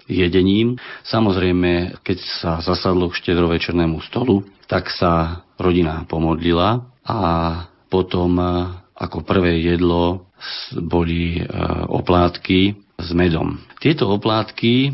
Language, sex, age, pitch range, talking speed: Slovak, male, 40-59, 85-95 Hz, 95 wpm